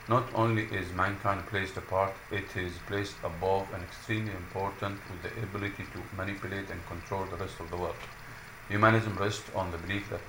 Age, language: 50-69, English